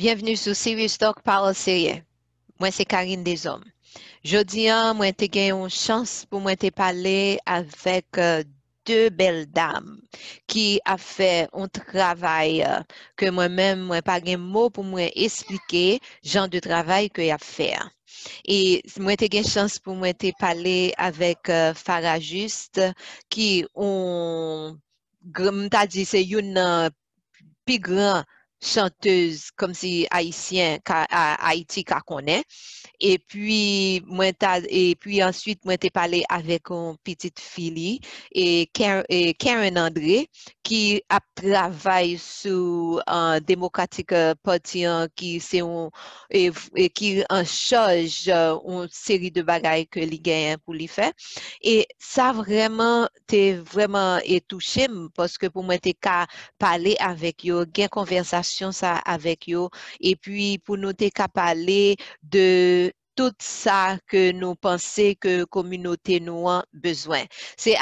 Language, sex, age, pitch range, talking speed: English, female, 30-49, 175-200 Hz, 135 wpm